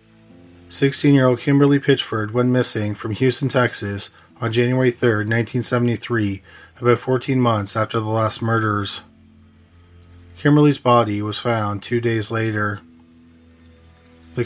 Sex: male